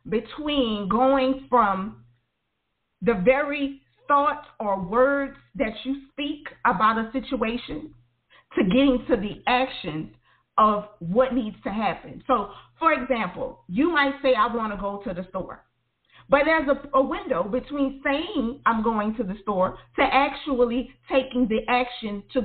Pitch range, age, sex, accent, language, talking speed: 230-280 Hz, 40-59, female, American, English, 145 wpm